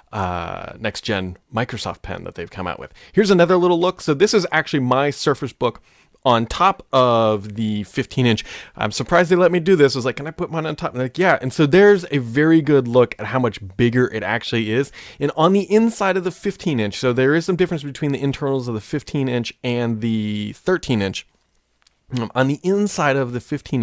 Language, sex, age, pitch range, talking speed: English, male, 30-49, 120-160 Hz, 215 wpm